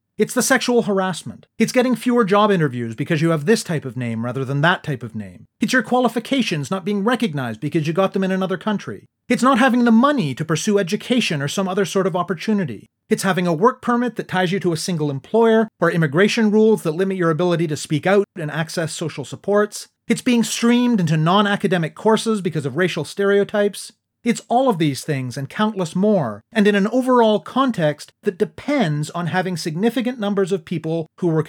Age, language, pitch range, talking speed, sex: 30-49, English, 155-215 Hz, 205 wpm, male